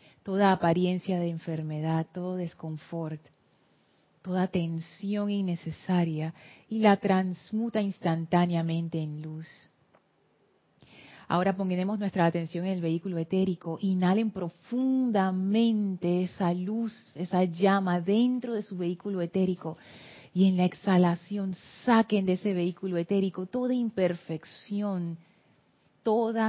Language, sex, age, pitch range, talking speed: Spanish, female, 30-49, 170-195 Hz, 105 wpm